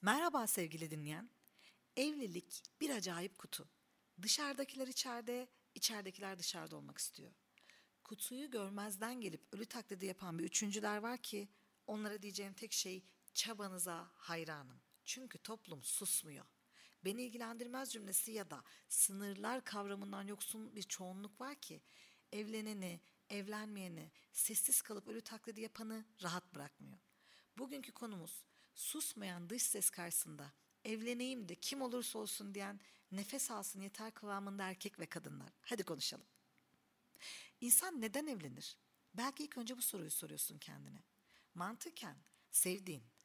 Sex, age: female, 50-69